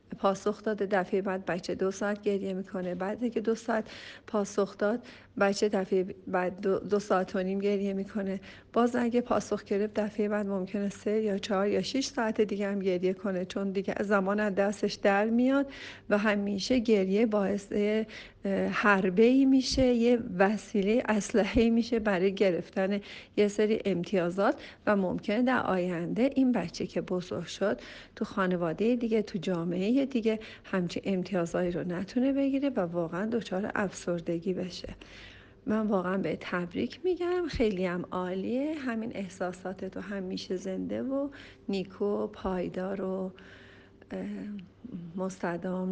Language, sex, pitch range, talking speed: Persian, female, 185-220 Hz, 135 wpm